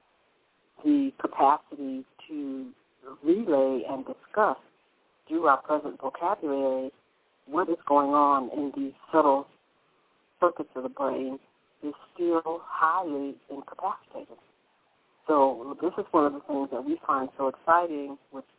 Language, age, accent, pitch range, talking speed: English, 60-79, American, 135-180 Hz, 125 wpm